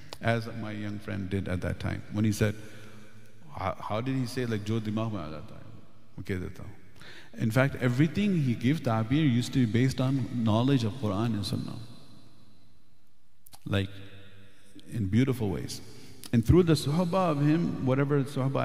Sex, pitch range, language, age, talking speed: male, 105-125 Hz, English, 50-69, 150 wpm